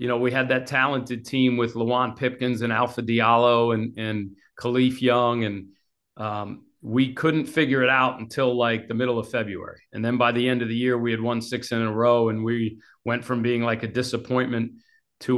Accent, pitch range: American, 115-135 Hz